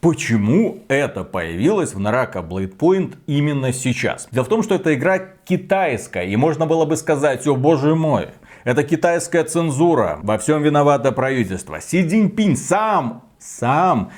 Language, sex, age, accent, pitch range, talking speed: Russian, male, 30-49, native, 120-165 Hz, 150 wpm